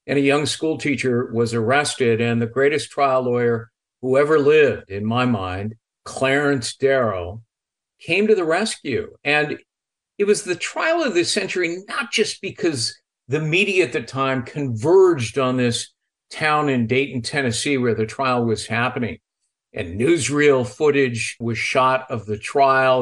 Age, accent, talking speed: 50-69, American, 155 wpm